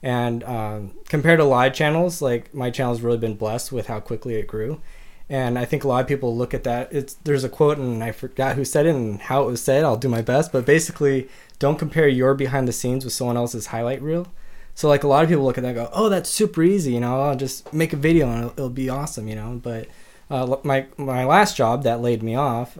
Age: 20-39